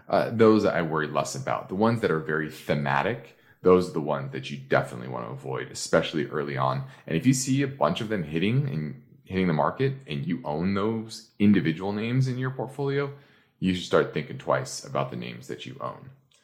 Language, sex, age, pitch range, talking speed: English, male, 30-49, 80-115 Hz, 210 wpm